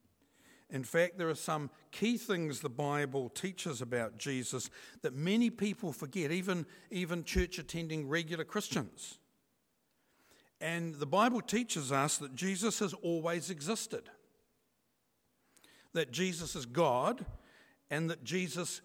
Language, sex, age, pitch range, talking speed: English, male, 60-79, 135-190 Hz, 120 wpm